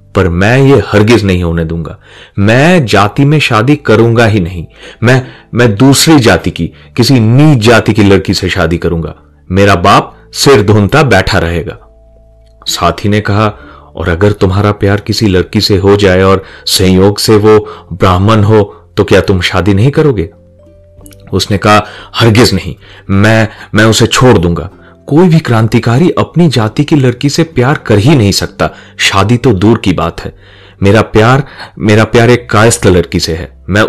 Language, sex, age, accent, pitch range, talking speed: Hindi, male, 30-49, native, 90-115 Hz, 160 wpm